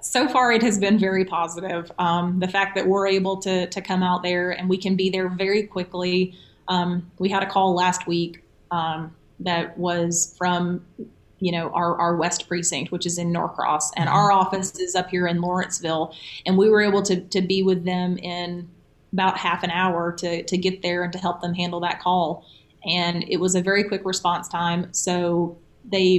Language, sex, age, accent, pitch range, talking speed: English, female, 30-49, American, 175-185 Hz, 205 wpm